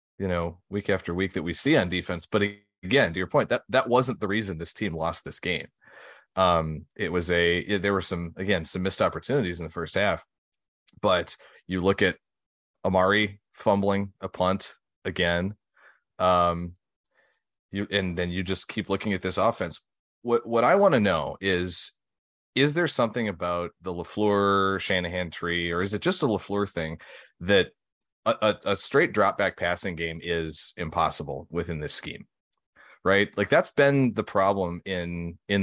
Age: 30-49